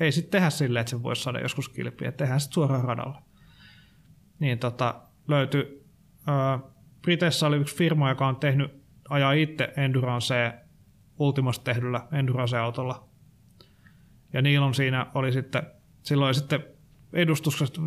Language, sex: Finnish, male